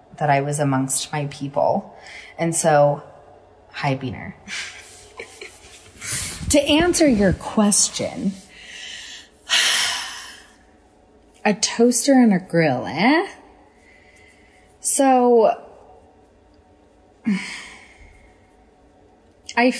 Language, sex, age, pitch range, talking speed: English, female, 30-49, 165-240 Hz, 65 wpm